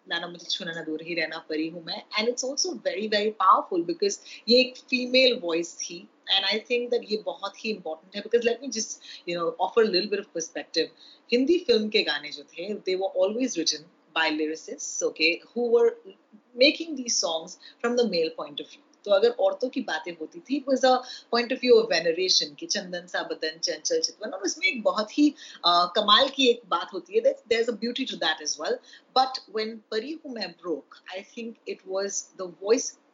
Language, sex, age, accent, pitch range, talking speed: Hindi, female, 30-49, native, 175-275 Hz, 130 wpm